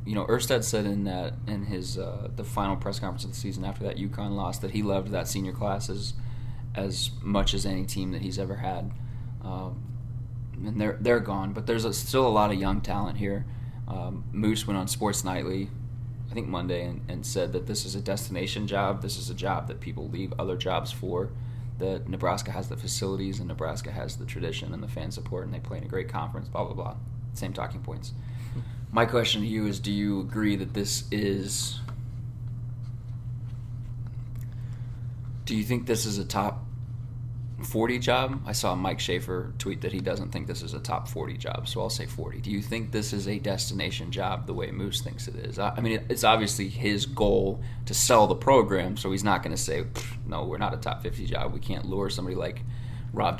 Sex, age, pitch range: male, 20-39, 105-120 Hz